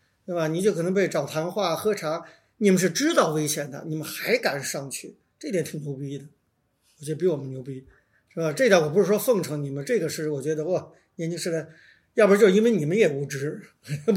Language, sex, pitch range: Chinese, male, 155-205 Hz